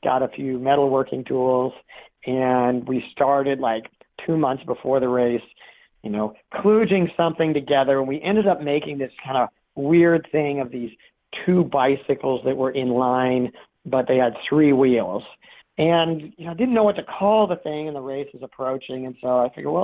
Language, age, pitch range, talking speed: English, 40-59, 125-155 Hz, 190 wpm